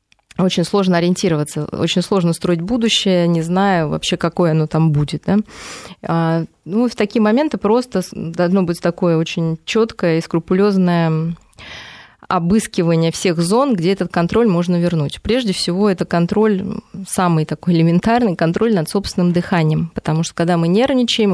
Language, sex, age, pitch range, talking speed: Russian, female, 20-39, 165-200 Hz, 145 wpm